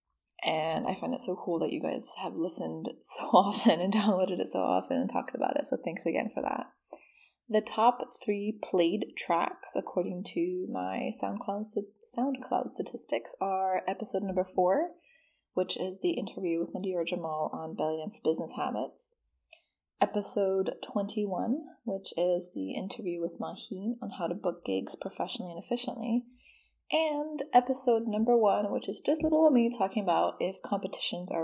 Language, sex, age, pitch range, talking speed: English, female, 20-39, 180-245 Hz, 160 wpm